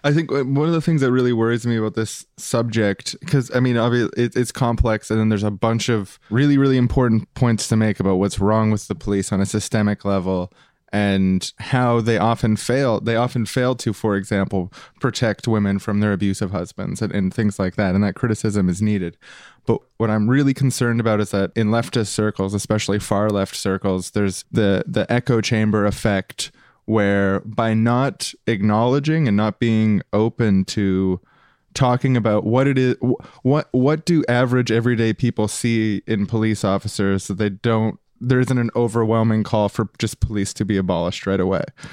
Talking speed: 185 wpm